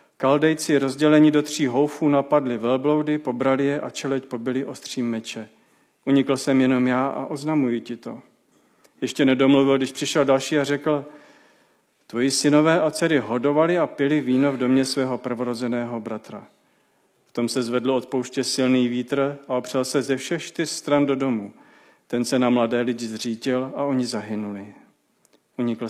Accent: native